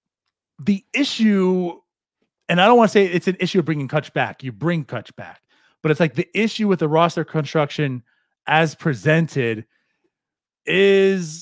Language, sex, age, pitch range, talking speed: English, male, 30-49, 130-170 Hz, 165 wpm